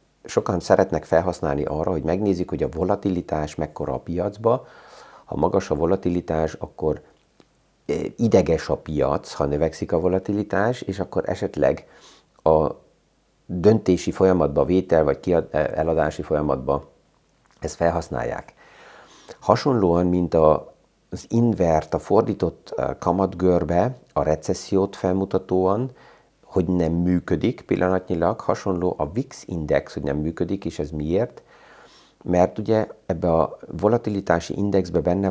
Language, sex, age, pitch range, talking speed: Hungarian, male, 50-69, 80-95 Hz, 115 wpm